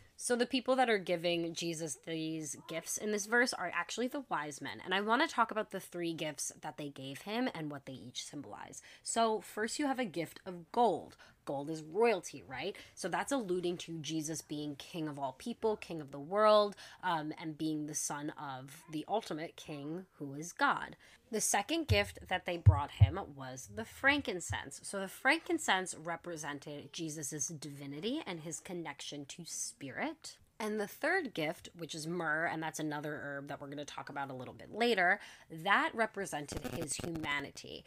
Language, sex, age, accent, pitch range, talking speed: English, female, 20-39, American, 150-195 Hz, 185 wpm